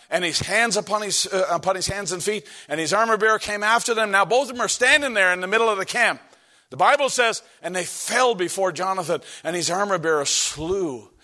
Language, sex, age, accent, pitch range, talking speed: English, male, 50-69, American, 200-245 Hz, 230 wpm